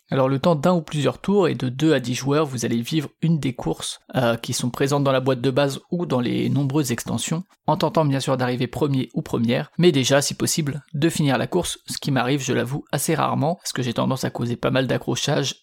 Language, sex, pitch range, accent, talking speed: French, male, 135-155 Hz, French, 250 wpm